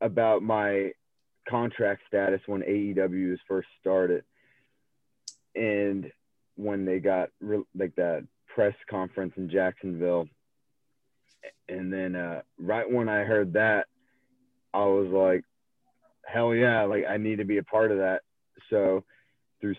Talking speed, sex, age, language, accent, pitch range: 135 wpm, male, 30-49, Hebrew, American, 90-105 Hz